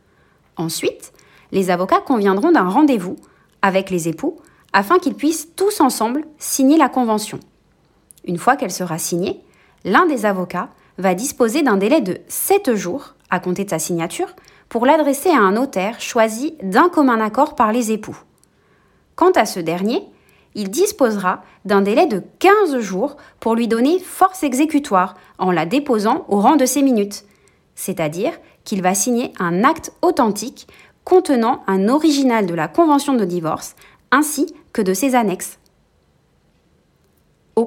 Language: French